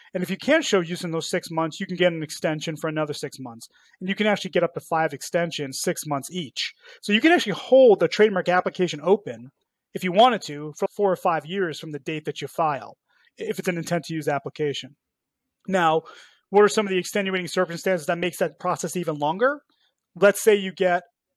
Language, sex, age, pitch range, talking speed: English, male, 30-49, 155-190 Hz, 225 wpm